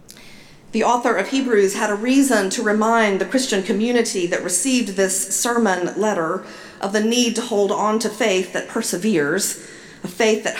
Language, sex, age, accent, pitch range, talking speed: English, female, 50-69, American, 180-235 Hz, 170 wpm